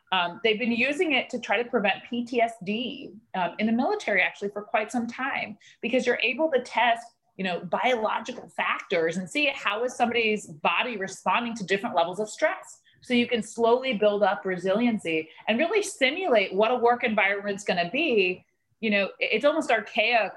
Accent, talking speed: American, 185 wpm